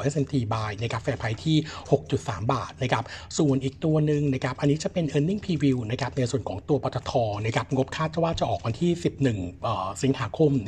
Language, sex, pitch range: Thai, male, 115-145 Hz